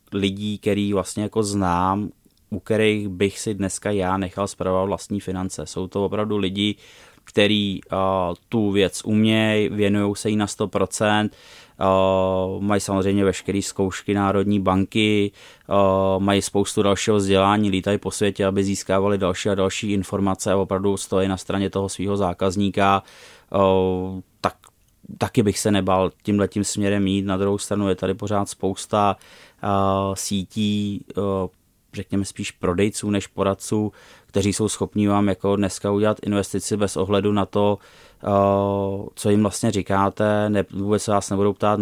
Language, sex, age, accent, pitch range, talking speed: Czech, male, 20-39, native, 95-105 Hz, 145 wpm